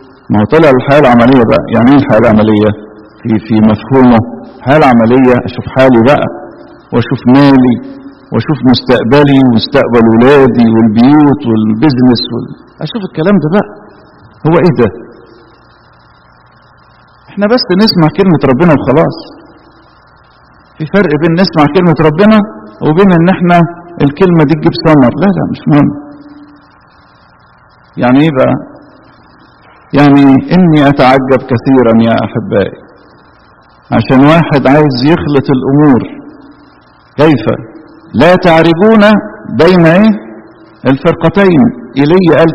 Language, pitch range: English, 135-195 Hz